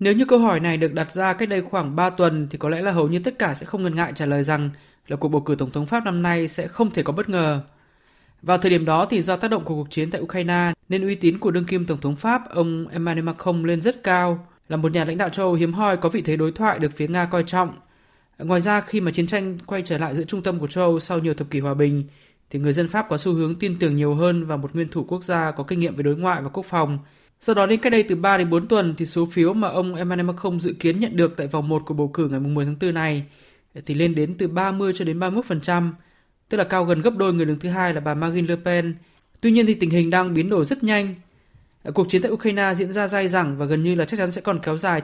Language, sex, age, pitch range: Vietnamese, male, 20-39, 155-190 Hz